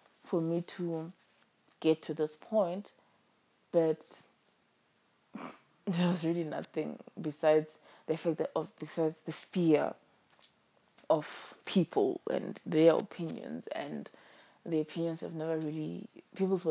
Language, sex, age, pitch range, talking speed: English, female, 20-39, 160-190 Hz, 115 wpm